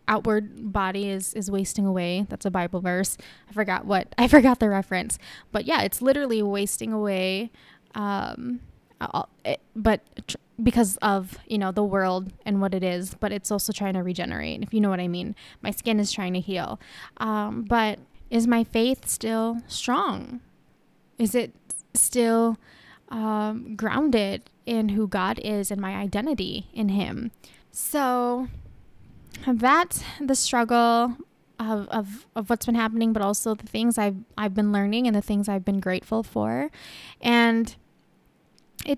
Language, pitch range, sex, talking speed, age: English, 200-235 Hz, female, 155 wpm, 10-29